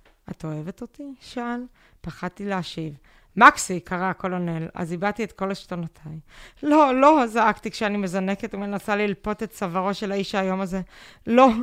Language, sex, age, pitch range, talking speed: Hebrew, female, 20-39, 175-205 Hz, 145 wpm